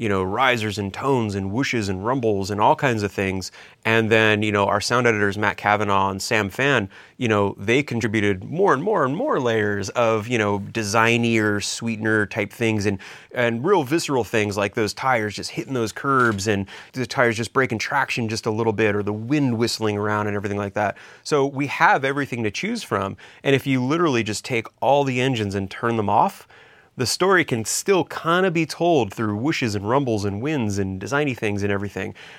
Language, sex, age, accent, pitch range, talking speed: English, male, 30-49, American, 105-130 Hz, 210 wpm